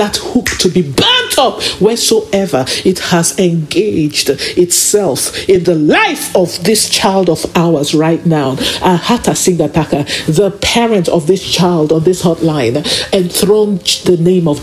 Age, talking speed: 50-69, 145 wpm